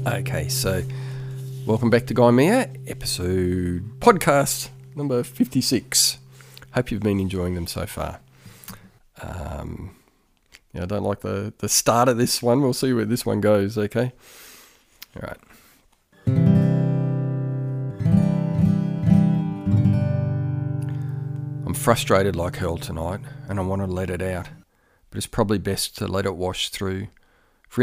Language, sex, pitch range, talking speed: English, male, 95-130 Hz, 125 wpm